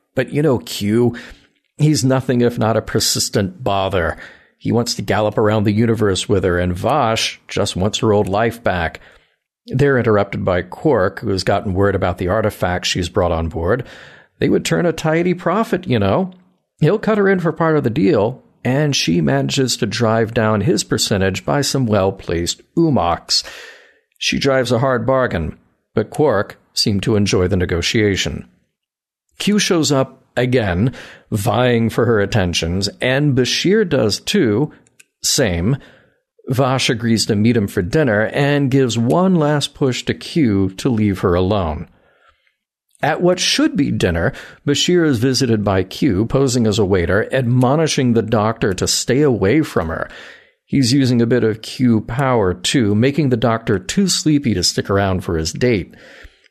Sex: male